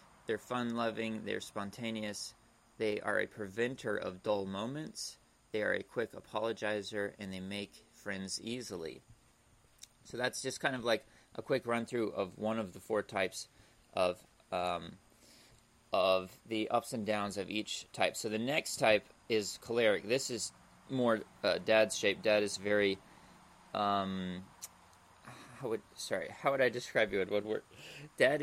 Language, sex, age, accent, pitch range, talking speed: English, male, 30-49, American, 100-115 Hz, 155 wpm